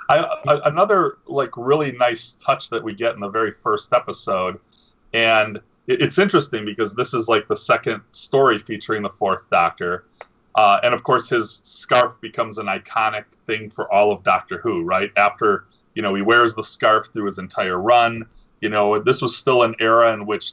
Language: English